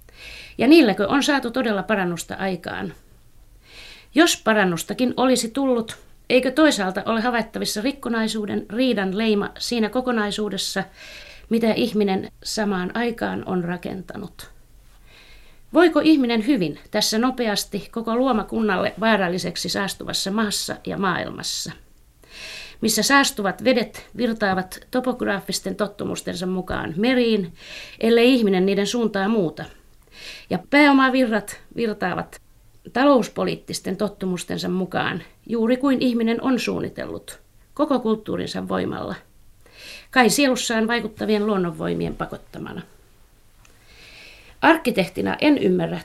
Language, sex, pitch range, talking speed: Finnish, female, 190-245 Hz, 95 wpm